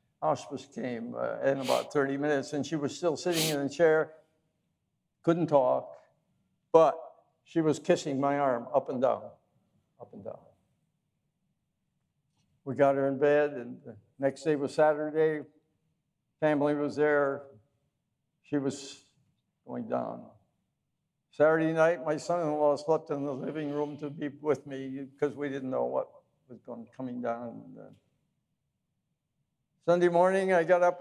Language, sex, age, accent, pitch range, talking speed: English, male, 60-79, American, 140-160 Hz, 145 wpm